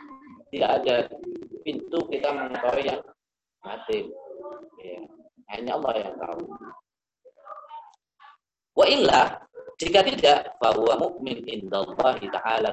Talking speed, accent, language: 95 wpm, native, Indonesian